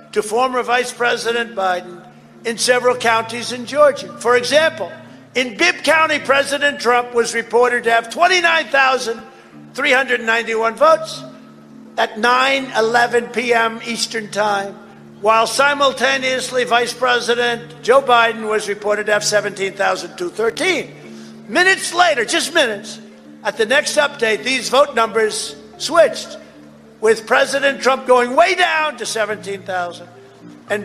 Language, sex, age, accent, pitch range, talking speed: English, male, 50-69, American, 205-255 Hz, 115 wpm